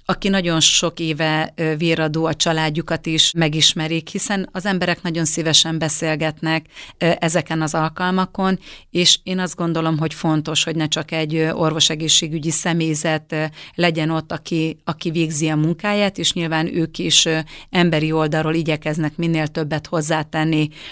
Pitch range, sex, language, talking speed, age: 155-170 Hz, female, Hungarian, 135 wpm, 30-49